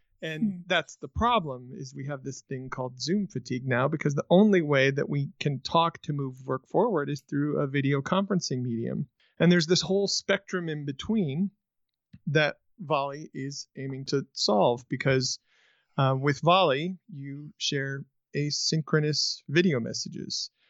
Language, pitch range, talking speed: English, 135-170 Hz, 155 wpm